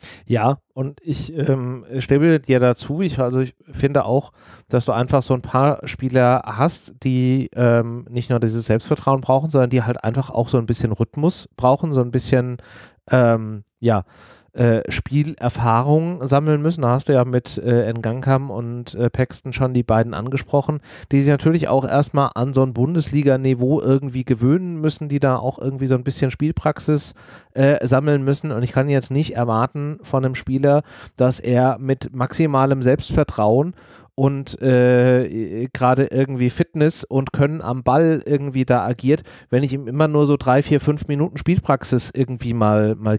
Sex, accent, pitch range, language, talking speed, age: male, German, 120-140 Hz, German, 170 wpm, 30-49